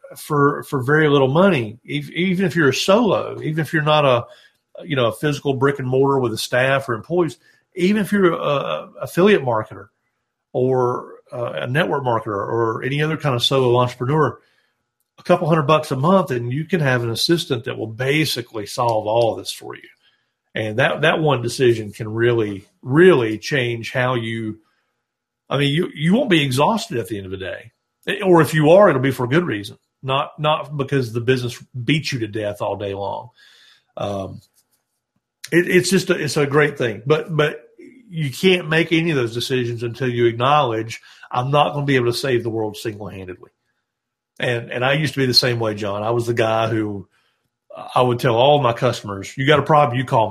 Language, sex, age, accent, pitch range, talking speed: English, male, 50-69, American, 120-155 Hz, 205 wpm